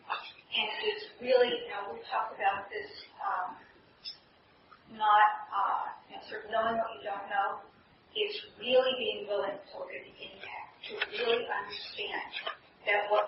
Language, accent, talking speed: English, American, 155 wpm